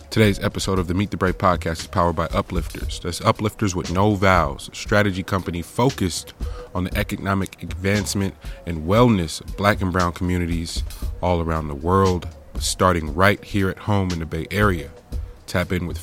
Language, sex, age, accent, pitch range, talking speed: English, male, 30-49, American, 85-100 Hz, 180 wpm